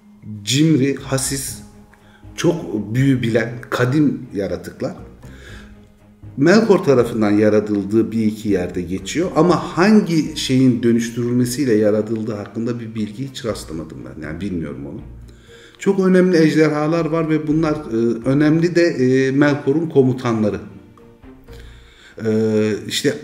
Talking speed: 100 wpm